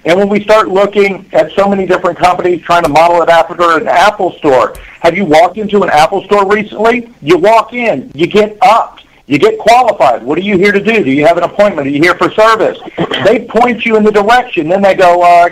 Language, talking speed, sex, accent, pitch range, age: English, 240 wpm, male, American, 165-205 Hz, 50-69